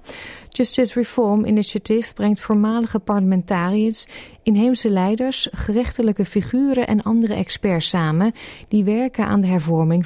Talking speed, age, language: 115 wpm, 30-49, Dutch